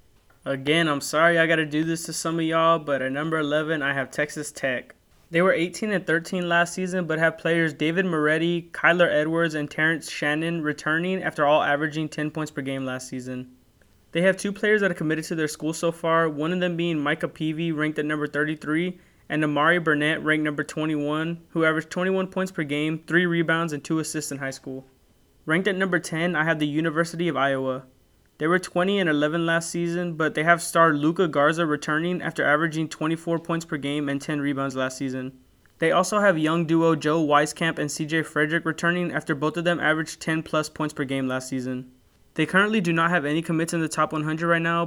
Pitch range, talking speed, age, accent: 150-170 Hz, 210 wpm, 20-39, American